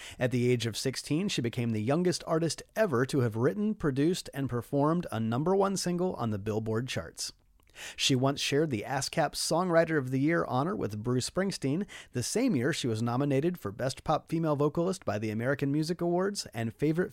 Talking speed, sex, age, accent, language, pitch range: 195 wpm, male, 30-49, American, English, 125-170 Hz